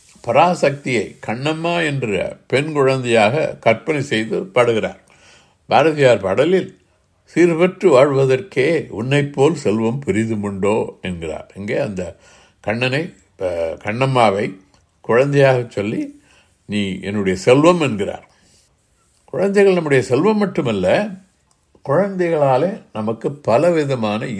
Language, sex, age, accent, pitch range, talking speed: Tamil, male, 60-79, native, 105-160 Hz, 85 wpm